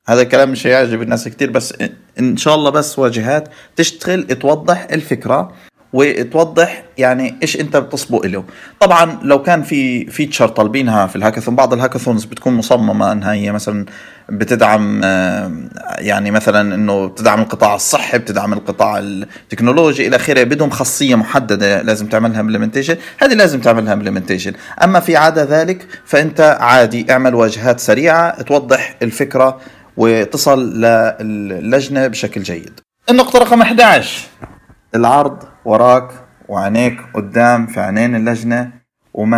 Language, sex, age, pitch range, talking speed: Arabic, male, 30-49, 115-150 Hz, 130 wpm